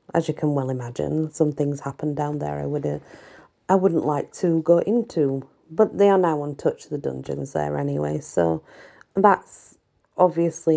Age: 40-59